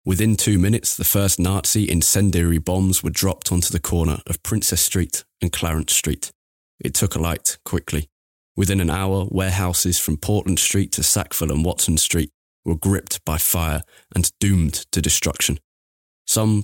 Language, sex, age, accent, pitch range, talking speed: English, male, 20-39, British, 80-95 Hz, 160 wpm